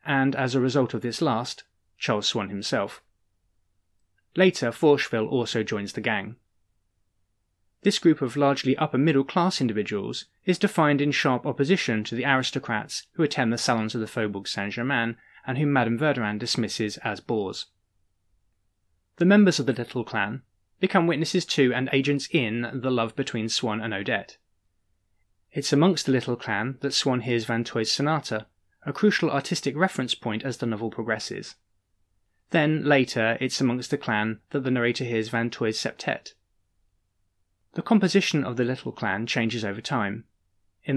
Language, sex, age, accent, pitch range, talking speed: English, male, 20-39, British, 105-140 Hz, 155 wpm